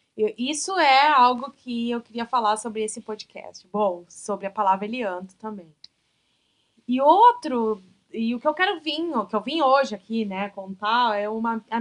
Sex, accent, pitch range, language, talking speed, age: female, Brazilian, 210-265 Hz, Portuguese, 175 wpm, 20-39